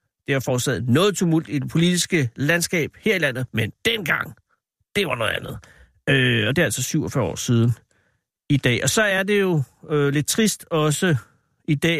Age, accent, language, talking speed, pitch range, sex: 60-79, native, Danish, 195 wpm, 125-155 Hz, male